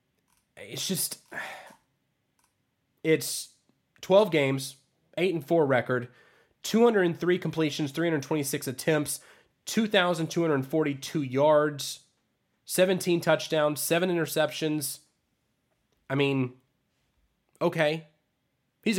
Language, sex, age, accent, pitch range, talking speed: English, male, 20-39, American, 135-165 Hz, 65 wpm